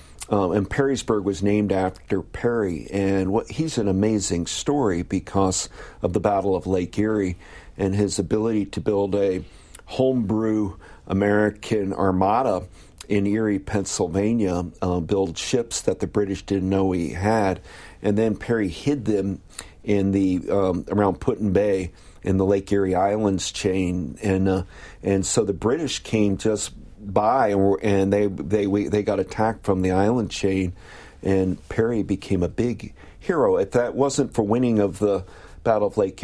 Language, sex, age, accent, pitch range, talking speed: English, male, 50-69, American, 95-105 Hz, 160 wpm